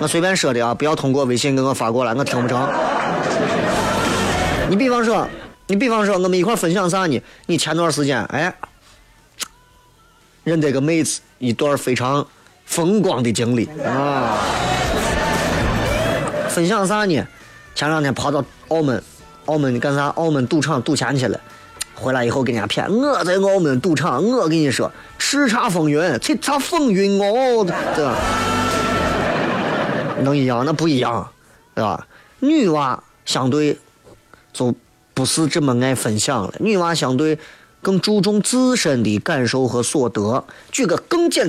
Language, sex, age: Chinese, male, 30-49